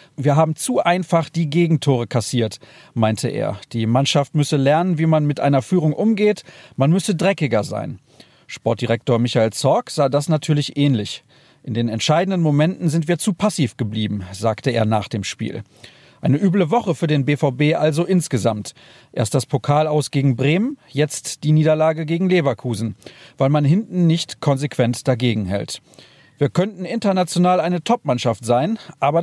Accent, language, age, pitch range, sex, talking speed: German, German, 40-59, 125-165 Hz, male, 160 wpm